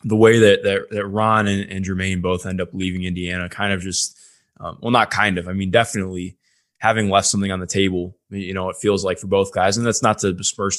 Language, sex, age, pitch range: English, male, 20-39, 95-110 Hz